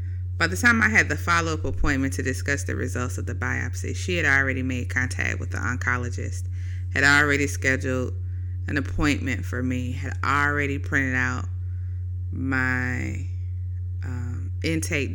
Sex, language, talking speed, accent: female, English, 145 wpm, American